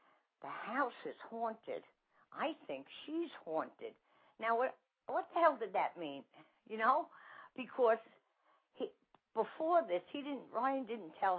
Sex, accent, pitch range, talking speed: female, American, 170-240 Hz, 140 wpm